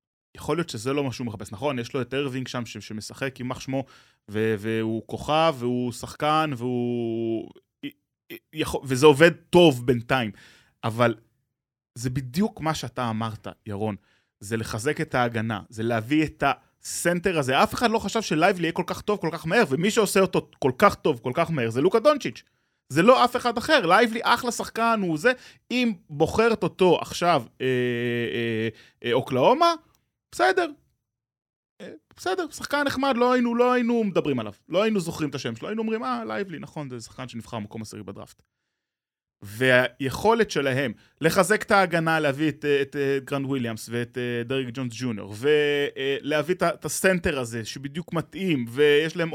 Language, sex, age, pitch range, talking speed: Hebrew, male, 20-39, 120-185 Hz, 170 wpm